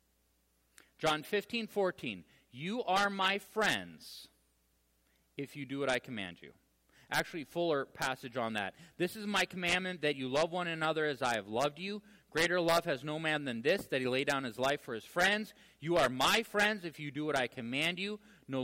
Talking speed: 195 wpm